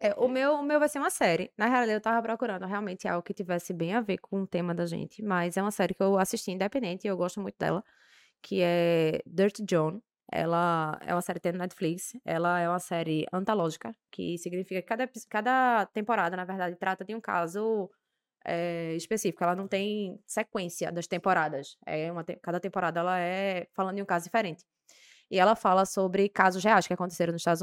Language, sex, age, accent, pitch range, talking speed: Portuguese, female, 20-39, Brazilian, 165-200 Hz, 210 wpm